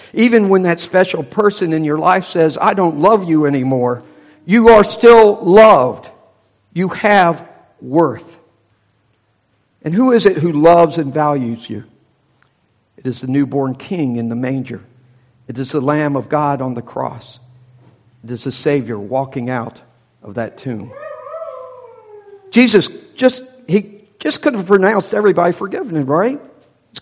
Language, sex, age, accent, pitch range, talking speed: English, male, 50-69, American, 140-220 Hz, 150 wpm